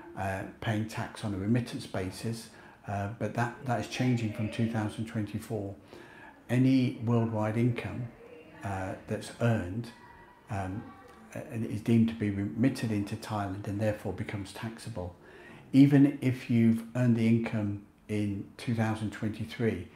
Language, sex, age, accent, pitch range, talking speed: English, male, 50-69, British, 105-120 Hz, 125 wpm